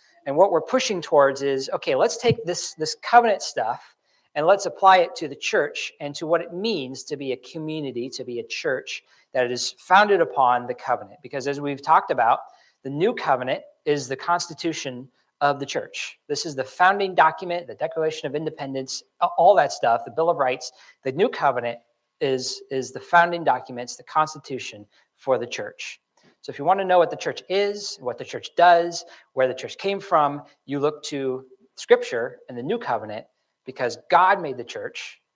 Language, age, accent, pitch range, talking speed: English, 40-59, American, 130-175 Hz, 195 wpm